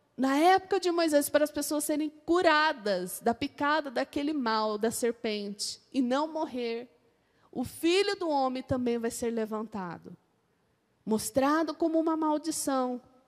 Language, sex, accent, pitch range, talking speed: Portuguese, female, Brazilian, 250-335 Hz, 135 wpm